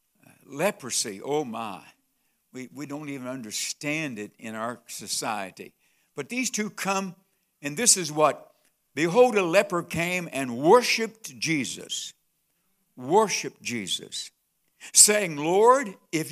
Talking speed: 120 wpm